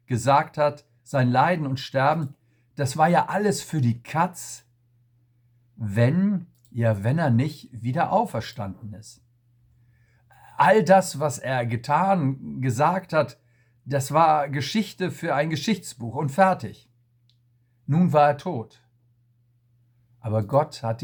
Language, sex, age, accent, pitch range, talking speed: German, male, 60-79, German, 120-150 Hz, 125 wpm